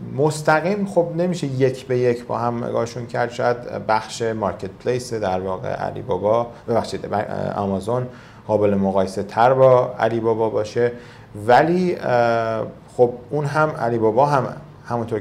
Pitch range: 95-120 Hz